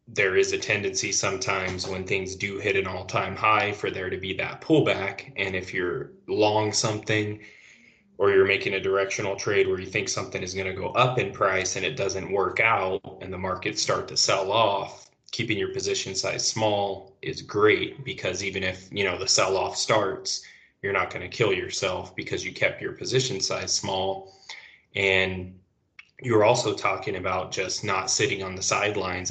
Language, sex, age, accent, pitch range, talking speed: English, male, 20-39, American, 95-125 Hz, 185 wpm